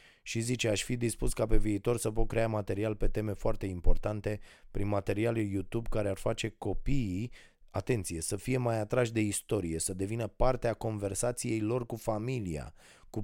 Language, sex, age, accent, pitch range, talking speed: Romanian, male, 20-39, native, 90-115 Hz, 170 wpm